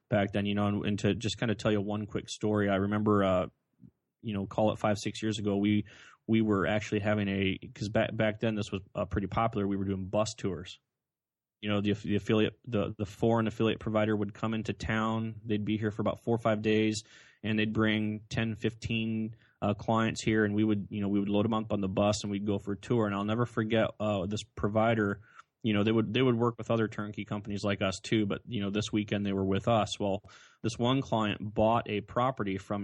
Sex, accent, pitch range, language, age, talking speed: male, American, 105-110 Hz, English, 20-39, 245 wpm